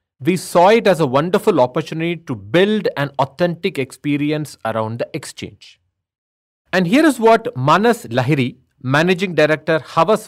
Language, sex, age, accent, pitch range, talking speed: English, male, 30-49, Indian, 125-180 Hz, 140 wpm